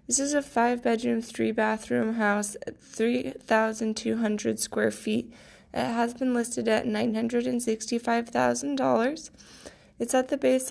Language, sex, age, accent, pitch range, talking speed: English, female, 20-39, American, 220-255 Hz, 110 wpm